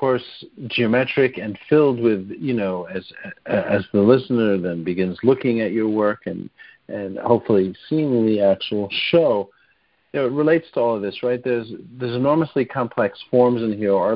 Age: 50-69